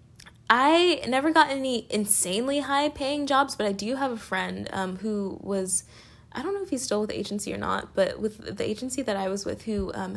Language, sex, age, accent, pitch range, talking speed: English, female, 20-39, American, 185-245 Hz, 225 wpm